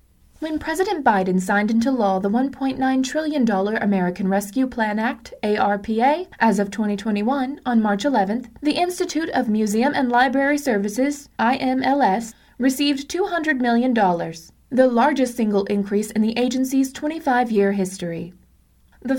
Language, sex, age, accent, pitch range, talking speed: English, female, 20-39, American, 210-275 Hz, 130 wpm